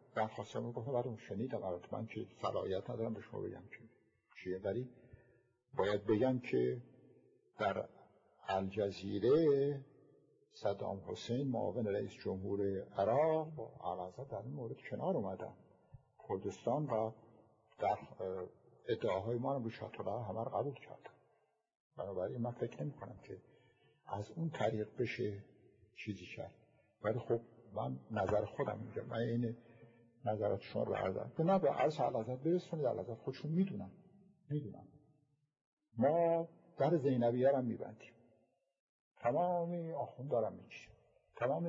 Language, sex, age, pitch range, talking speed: Persian, male, 60-79, 110-145 Hz, 120 wpm